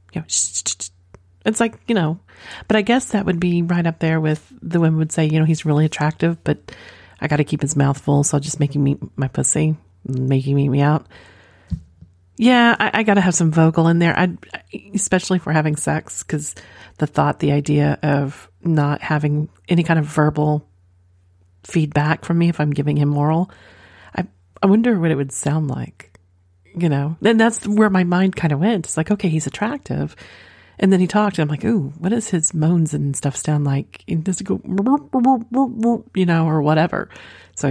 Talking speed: 200 wpm